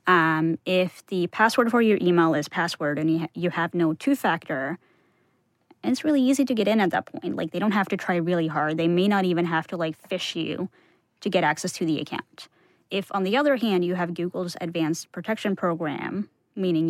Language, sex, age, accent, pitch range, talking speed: English, female, 20-39, American, 165-190 Hz, 210 wpm